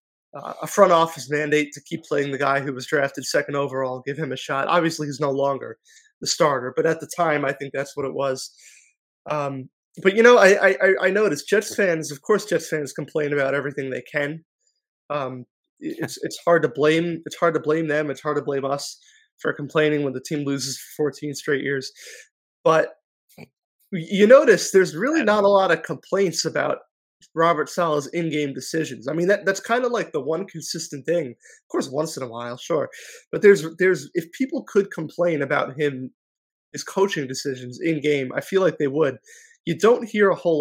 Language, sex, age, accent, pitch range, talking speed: English, male, 20-39, American, 140-190 Hz, 200 wpm